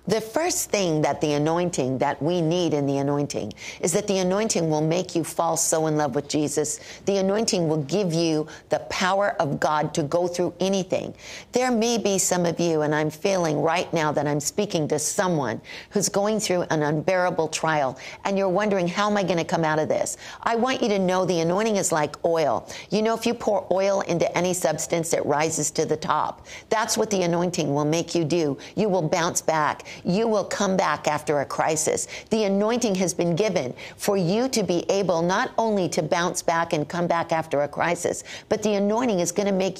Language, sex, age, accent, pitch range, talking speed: English, female, 50-69, American, 160-205 Hz, 215 wpm